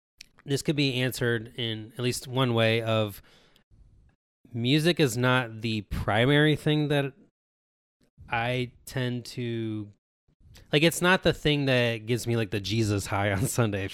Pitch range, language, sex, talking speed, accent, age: 105-130 Hz, English, male, 150 wpm, American, 20-39